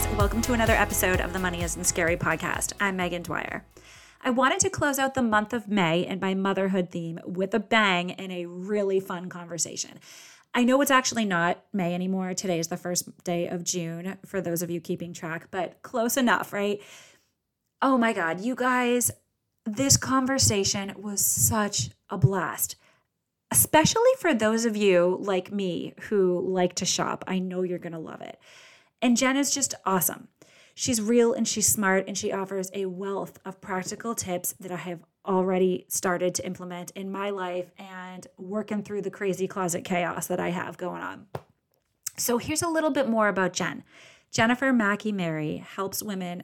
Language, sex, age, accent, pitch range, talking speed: English, female, 30-49, American, 180-220 Hz, 180 wpm